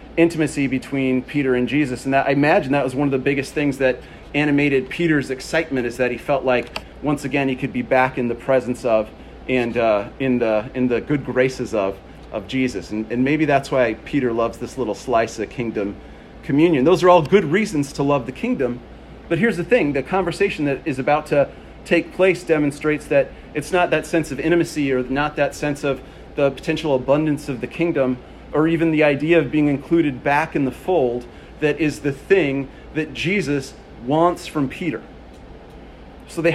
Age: 30-49